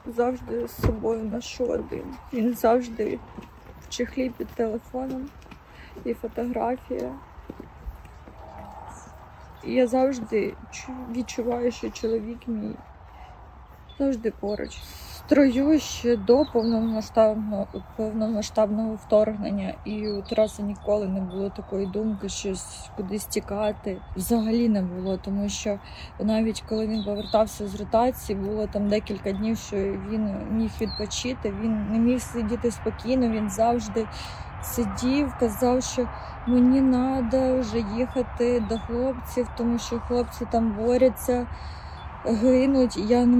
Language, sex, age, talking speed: Ukrainian, female, 20-39, 110 wpm